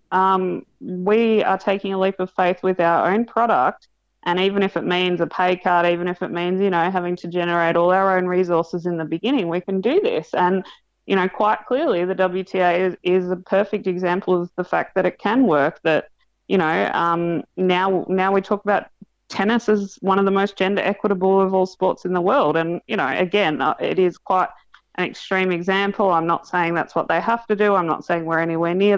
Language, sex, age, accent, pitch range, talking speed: English, female, 20-39, Australian, 170-190 Hz, 220 wpm